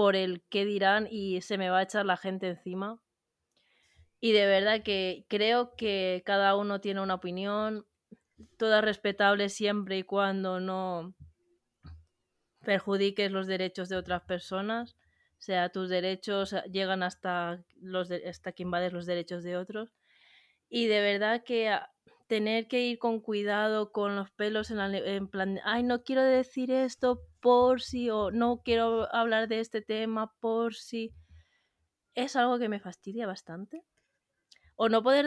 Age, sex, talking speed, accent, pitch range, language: 20-39, female, 160 wpm, Spanish, 190-225 Hz, Spanish